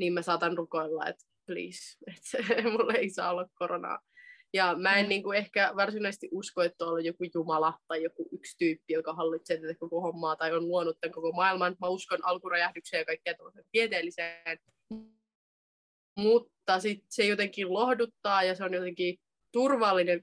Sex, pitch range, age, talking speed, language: female, 165-200 Hz, 20-39, 165 wpm, Finnish